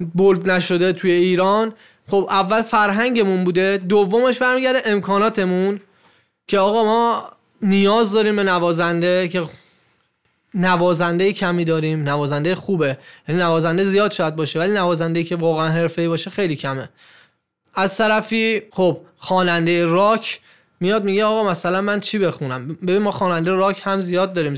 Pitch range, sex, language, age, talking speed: 170-215 Hz, male, Persian, 20-39, 135 wpm